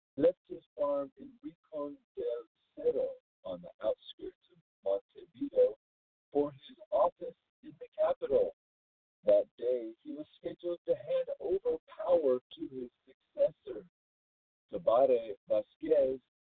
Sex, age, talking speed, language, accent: male, 50-69, 115 wpm, English, American